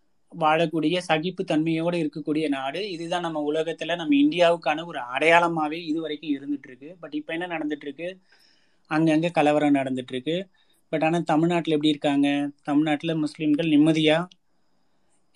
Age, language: 30-49, Tamil